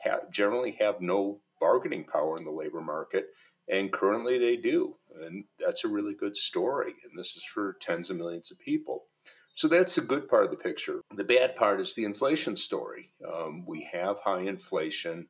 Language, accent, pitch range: English, American, 320-470 Hz